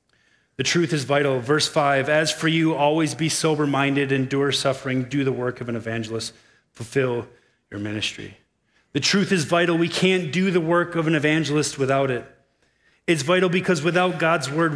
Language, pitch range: English, 130-160 Hz